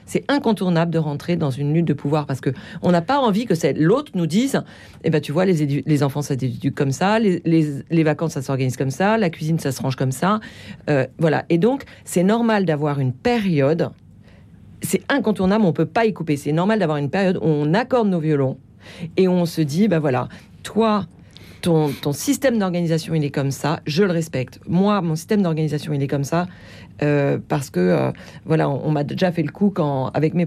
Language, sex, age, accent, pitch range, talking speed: French, female, 40-59, French, 145-180 Hz, 230 wpm